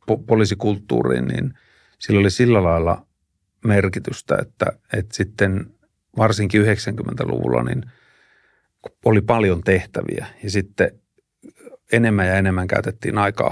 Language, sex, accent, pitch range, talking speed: Finnish, male, native, 95-110 Hz, 100 wpm